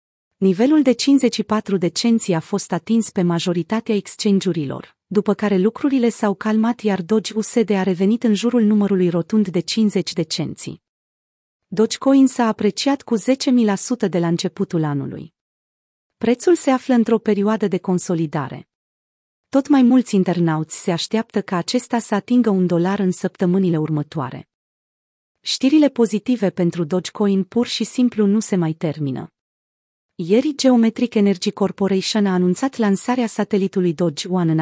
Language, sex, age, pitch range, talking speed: Romanian, female, 30-49, 175-230 Hz, 140 wpm